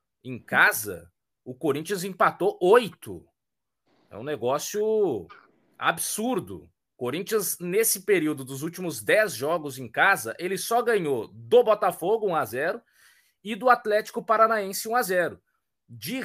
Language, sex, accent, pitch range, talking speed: Portuguese, male, Brazilian, 155-215 Hz, 120 wpm